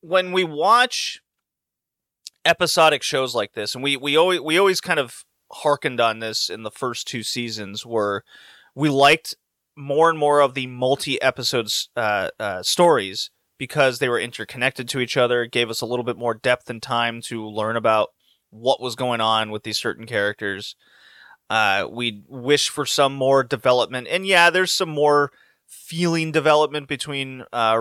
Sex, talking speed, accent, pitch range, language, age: male, 170 wpm, American, 120-150 Hz, English, 30-49